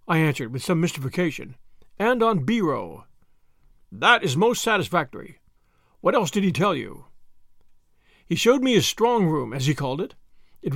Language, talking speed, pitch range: English, 160 wpm, 145-215 Hz